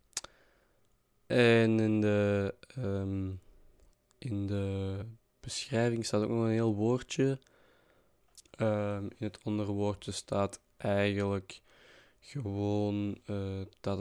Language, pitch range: Dutch, 100-115 Hz